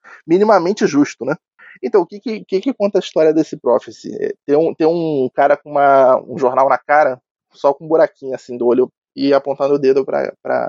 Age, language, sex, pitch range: 20-39, Portuguese, male, 140-200 Hz